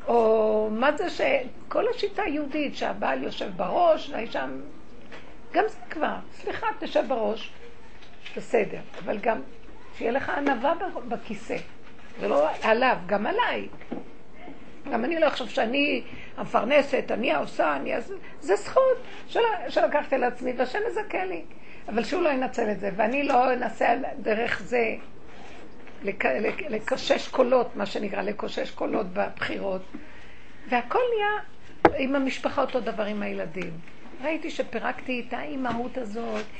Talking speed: 125 wpm